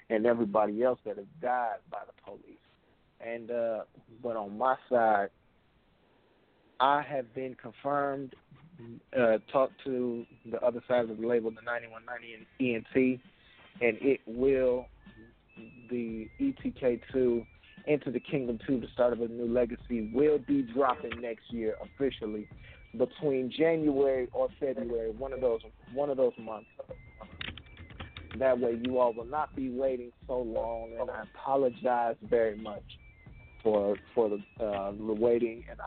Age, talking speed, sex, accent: 40-59, 155 wpm, male, American